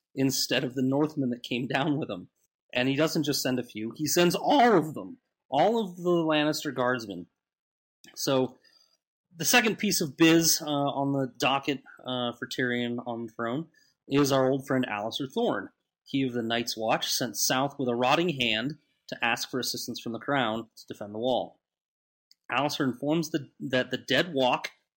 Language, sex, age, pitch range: English, male, 30-49, 125-155 Hz